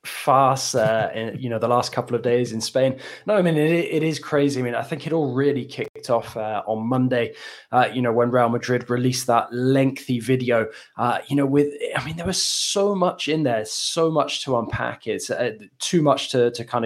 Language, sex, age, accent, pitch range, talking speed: English, male, 10-29, British, 115-130 Hz, 230 wpm